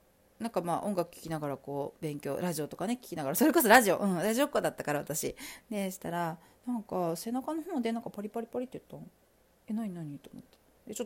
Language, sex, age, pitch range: Japanese, female, 40-59, 200-310 Hz